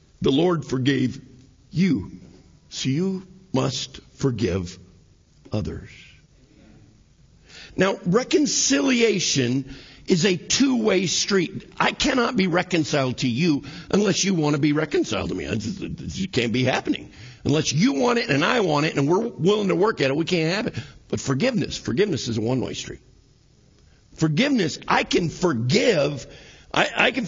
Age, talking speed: 50-69, 145 wpm